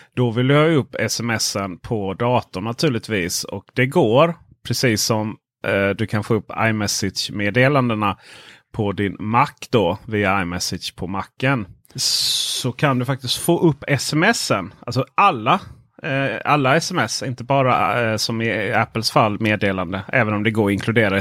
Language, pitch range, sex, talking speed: Swedish, 100-135 Hz, male, 145 wpm